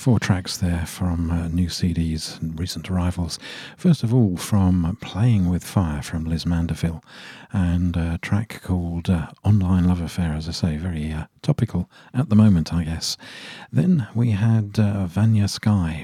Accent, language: British, English